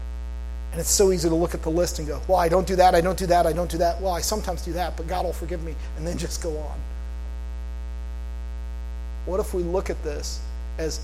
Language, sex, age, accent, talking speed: English, male, 40-59, American, 250 wpm